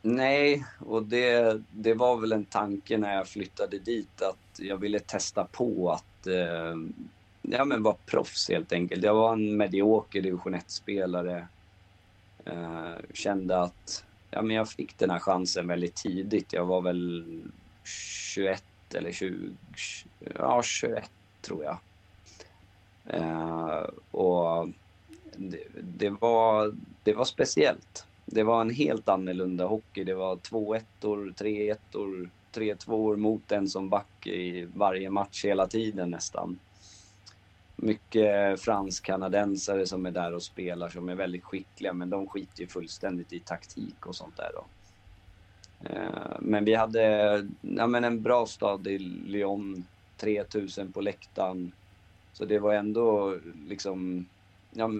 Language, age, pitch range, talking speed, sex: Swedish, 30-49, 90-105 Hz, 135 wpm, male